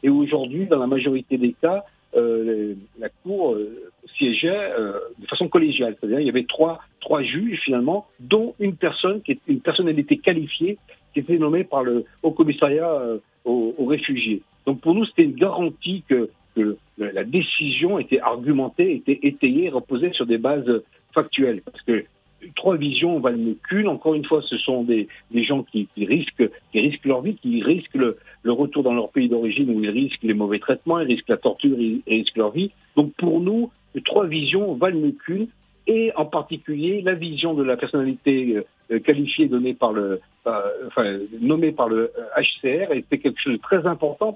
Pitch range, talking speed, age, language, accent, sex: 125-190 Hz, 190 wpm, 60-79, French, French, male